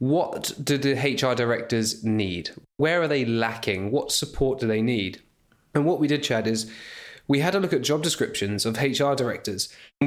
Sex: male